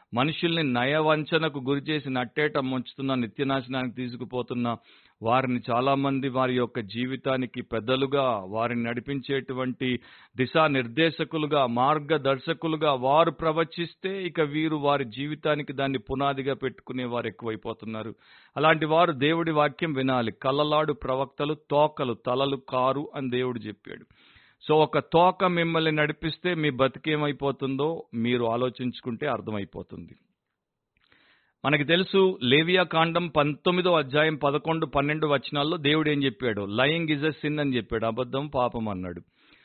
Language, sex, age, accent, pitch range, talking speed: Telugu, male, 50-69, native, 125-160 Hz, 110 wpm